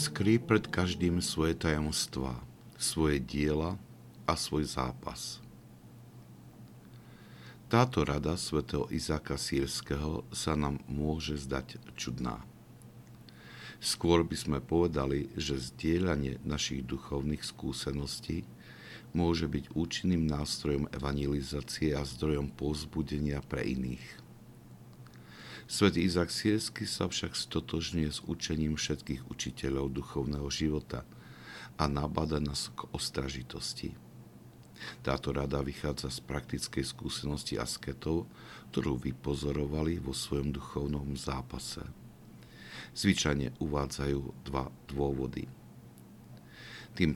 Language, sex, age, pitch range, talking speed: Slovak, male, 50-69, 70-80 Hz, 95 wpm